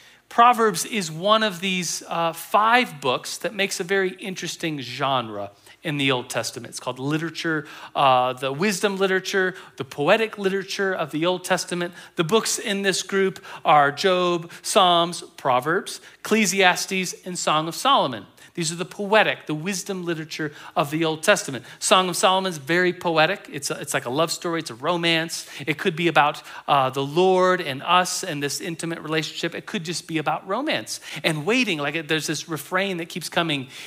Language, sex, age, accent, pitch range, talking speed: English, male, 40-59, American, 150-190 Hz, 175 wpm